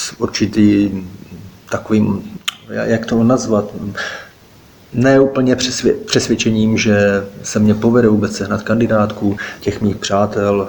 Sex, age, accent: male, 30-49, native